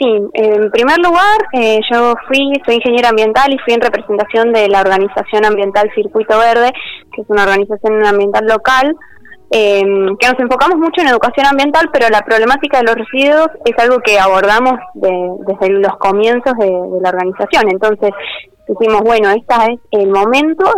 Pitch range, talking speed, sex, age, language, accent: 200-255 Hz, 170 wpm, female, 20-39, Spanish, Argentinian